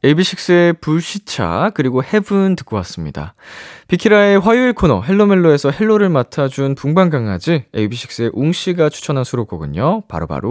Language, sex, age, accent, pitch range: Korean, male, 20-39, native, 100-165 Hz